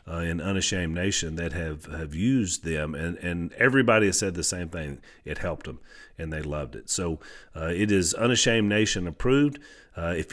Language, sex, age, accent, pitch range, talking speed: English, male, 40-59, American, 85-110 Hz, 190 wpm